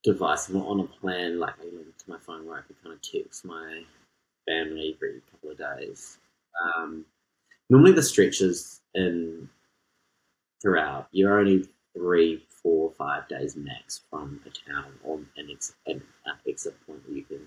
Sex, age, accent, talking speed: male, 30-49, Australian, 170 wpm